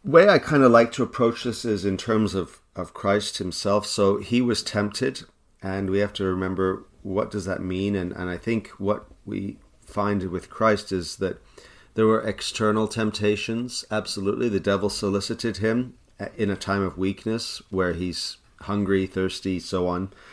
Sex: male